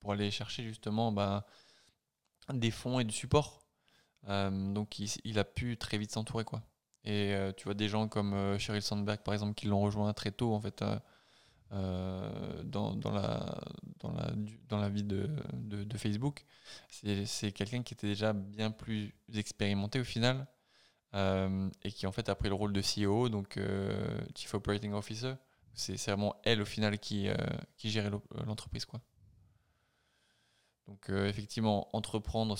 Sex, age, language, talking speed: male, 20-39, French, 175 wpm